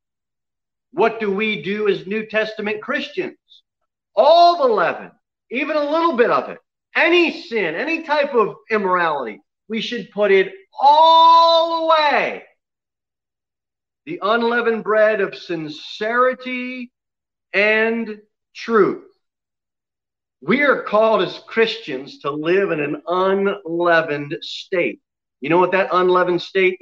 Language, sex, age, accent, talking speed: English, male, 40-59, American, 120 wpm